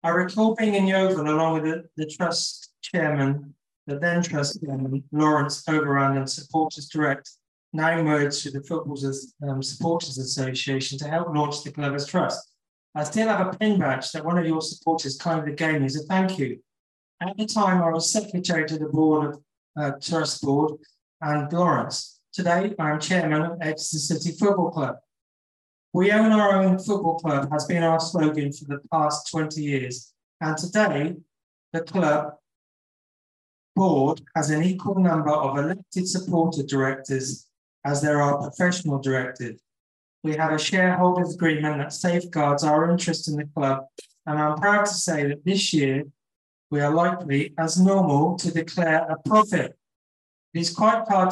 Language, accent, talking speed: English, British, 165 wpm